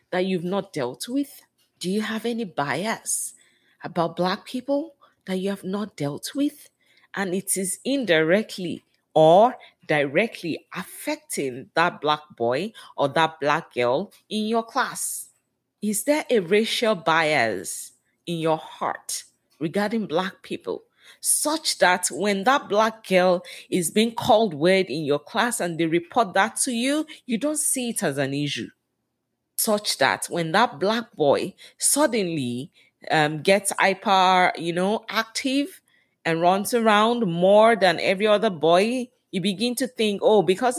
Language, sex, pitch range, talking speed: English, female, 175-235 Hz, 145 wpm